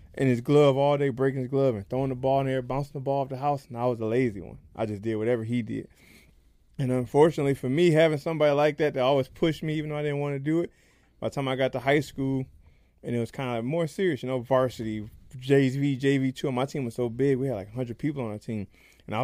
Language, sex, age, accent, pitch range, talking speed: English, male, 20-39, American, 120-155 Hz, 275 wpm